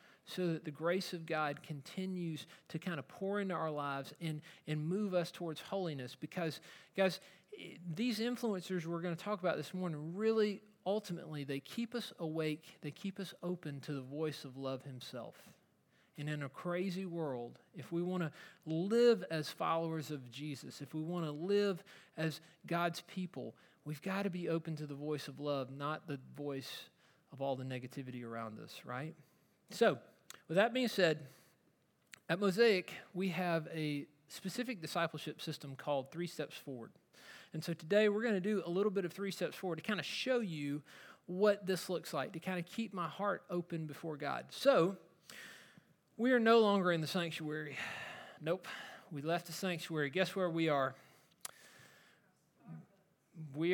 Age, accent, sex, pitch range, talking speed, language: 40-59, American, male, 150-190 Hz, 175 wpm, English